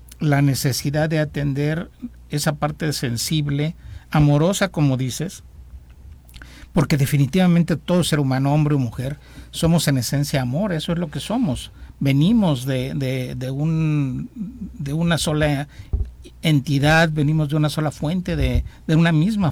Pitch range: 135-165 Hz